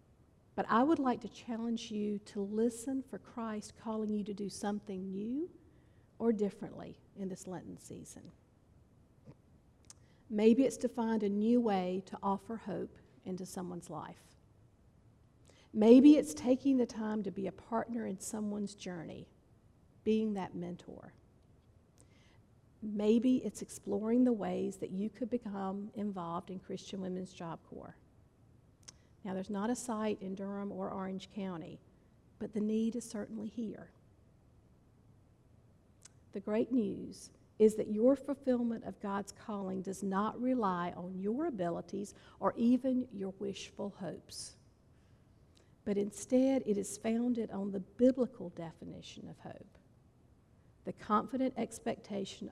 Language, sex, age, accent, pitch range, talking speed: English, female, 50-69, American, 185-225 Hz, 135 wpm